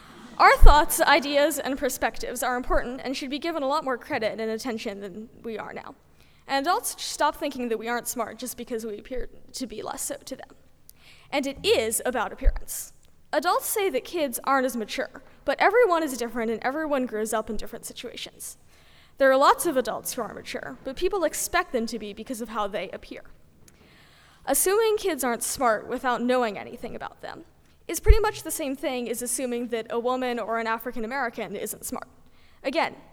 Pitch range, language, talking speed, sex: 235-300 Hz, English, 195 wpm, female